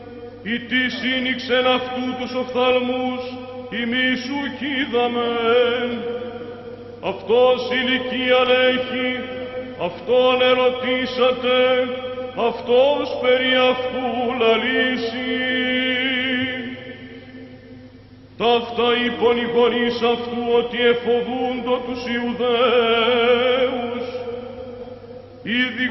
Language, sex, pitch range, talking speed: Greek, male, 240-255 Hz, 55 wpm